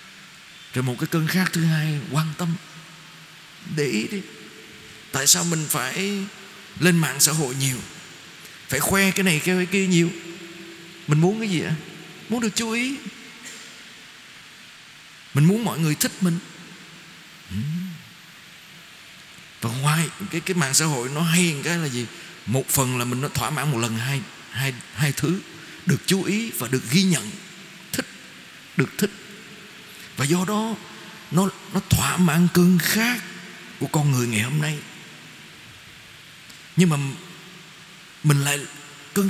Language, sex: Vietnamese, male